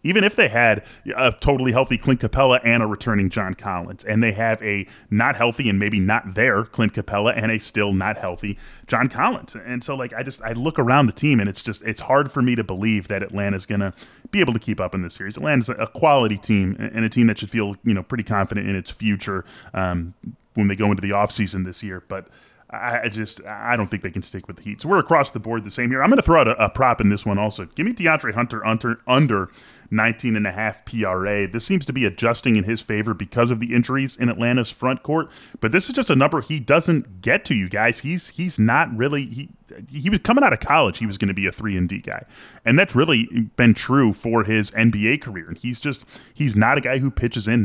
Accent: American